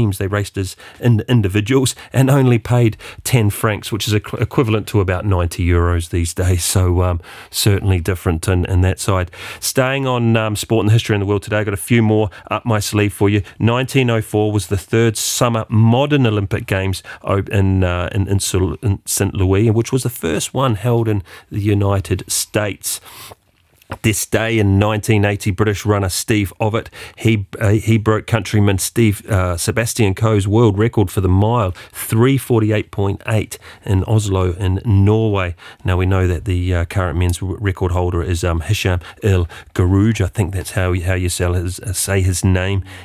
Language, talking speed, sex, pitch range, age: English, 180 wpm, male, 90-110 Hz, 40-59